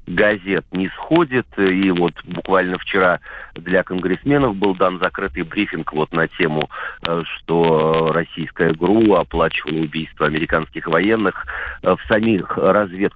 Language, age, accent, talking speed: Russian, 40-59, native, 120 wpm